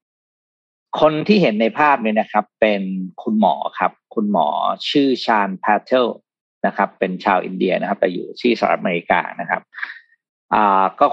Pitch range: 100-135 Hz